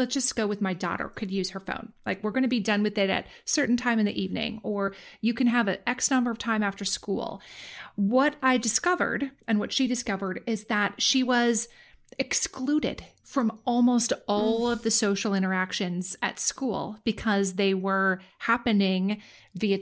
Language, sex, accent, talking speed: English, female, American, 185 wpm